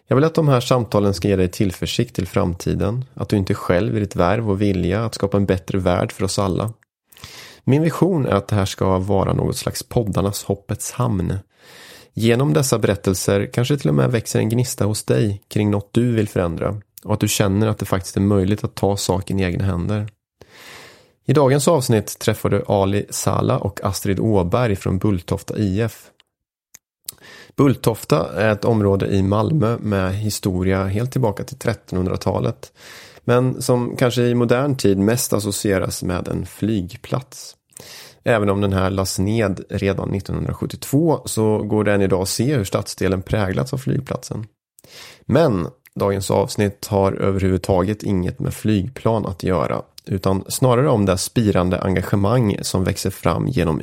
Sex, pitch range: male, 95-115 Hz